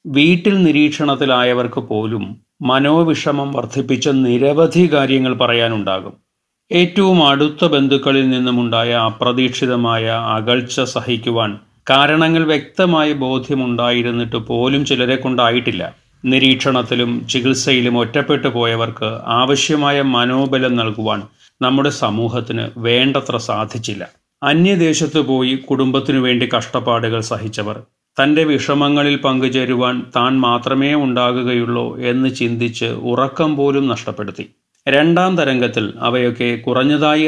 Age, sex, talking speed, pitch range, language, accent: 30-49, male, 85 wpm, 115-140 Hz, Malayalam, native